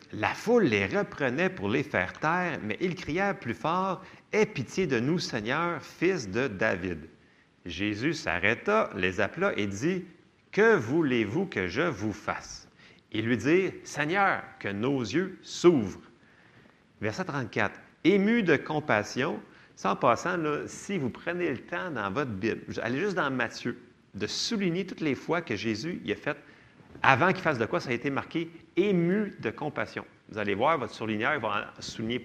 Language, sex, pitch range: French, male, 115-180 Hz